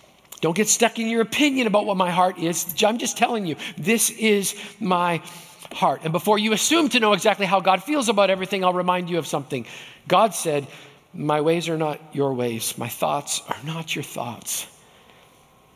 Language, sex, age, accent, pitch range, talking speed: English, male, 50-69, American, 155-200 Hz, 190 wpm